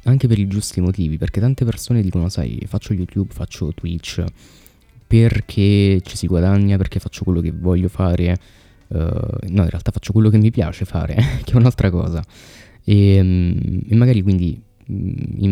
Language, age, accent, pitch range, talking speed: Italian, 20-39, native, 90-105 Hz, 165 wpm